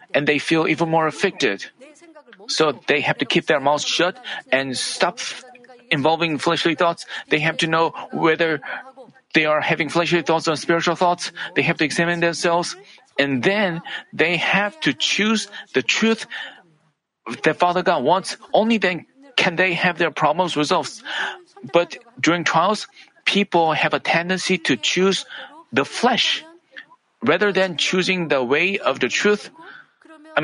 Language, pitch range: Korean, 165-215 Hz